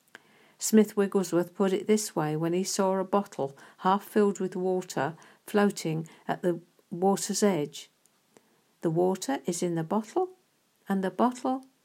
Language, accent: English, British